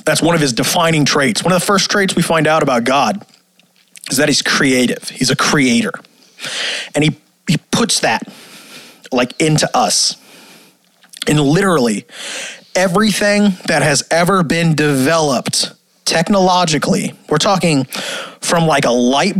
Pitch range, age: 145-205 Hz, 30-49